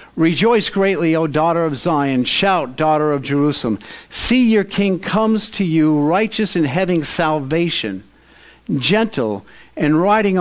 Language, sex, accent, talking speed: English, male, American, 135 wpm